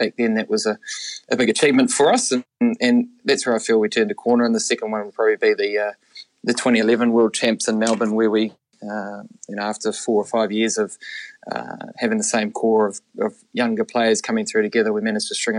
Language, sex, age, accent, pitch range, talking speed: English, male, 20-39, Australian, 110-120 Hz, 240 wpm